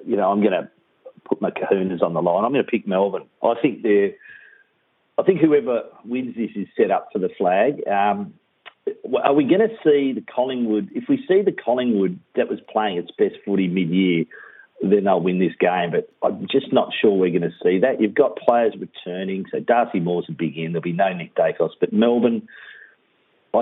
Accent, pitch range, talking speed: Australian, 90-125 Hz, 210 wpm